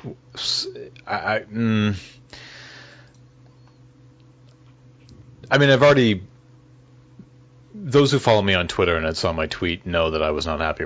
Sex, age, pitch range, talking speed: male, 30-49, 90-125 Hz, 135 wpm